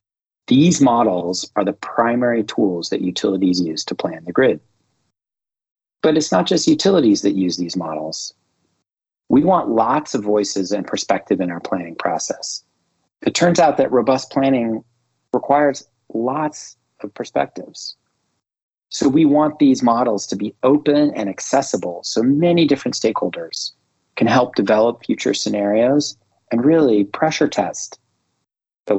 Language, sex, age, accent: English, male, 30-49, American